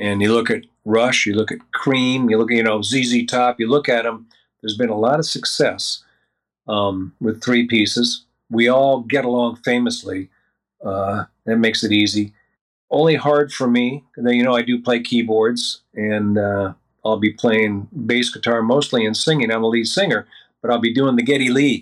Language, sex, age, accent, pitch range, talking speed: English, male, 50-69, American, 110-140 Hz, 195 wpm